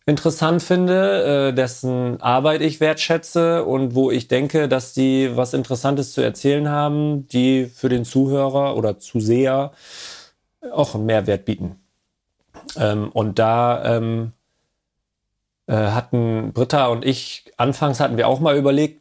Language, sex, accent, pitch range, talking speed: German, male, German, 120-145 Hz, 125 wpm